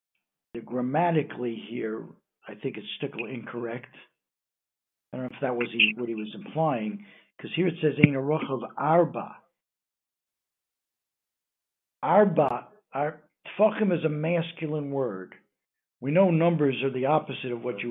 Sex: male